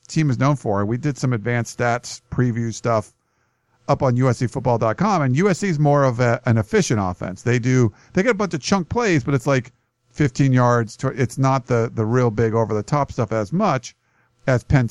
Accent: American